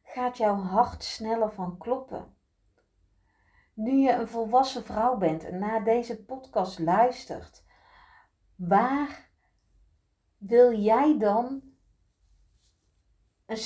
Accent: Dutch